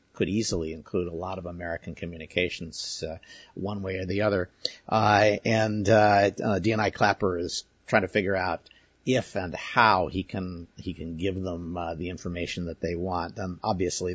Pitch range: 90-110 Hz